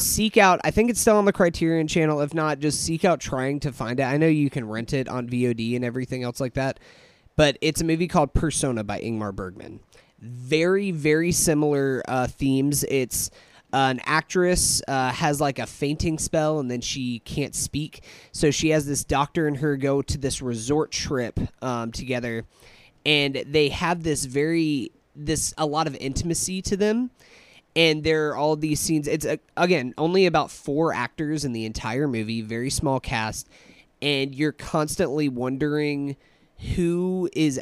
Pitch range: 130-155 Hz